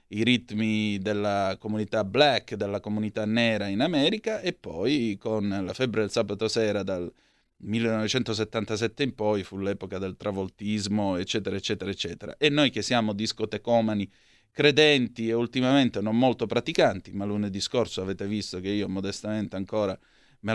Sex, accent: male, native